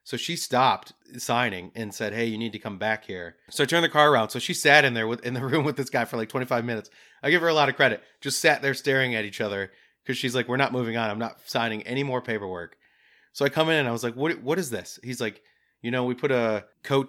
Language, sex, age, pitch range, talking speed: English, male, 30-49, 105-130 Hz, 290 wpm